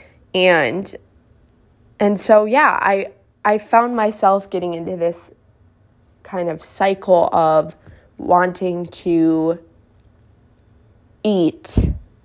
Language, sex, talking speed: English, female, 90 wpm